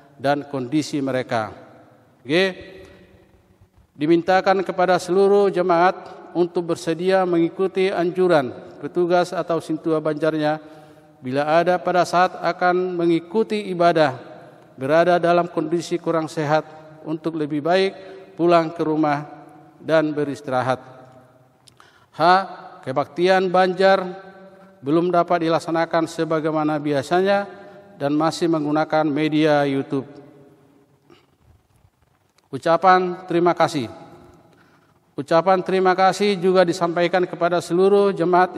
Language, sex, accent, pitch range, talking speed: Indonesian, male, native, 150-180 Hz, 95 wpm